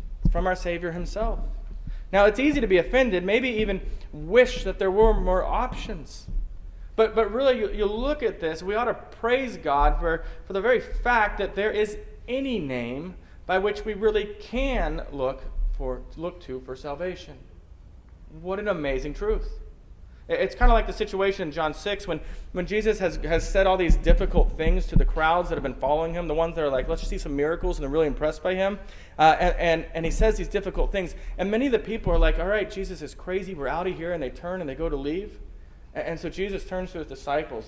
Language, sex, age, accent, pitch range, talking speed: English, male, 30-49, American, 145-200 Hz, 225 wpm